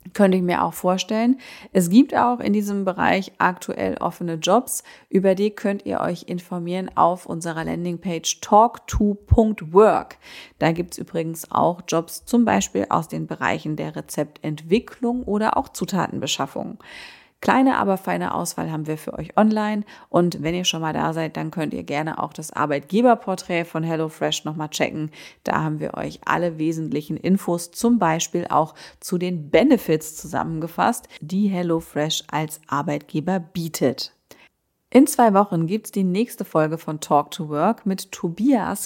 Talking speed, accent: 155 wpm, German